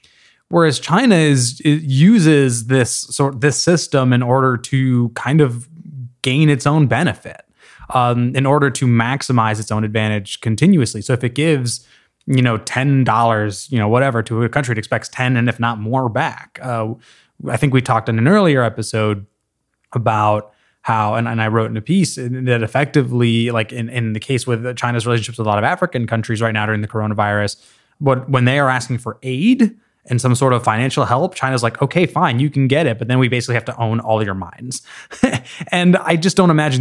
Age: 20-39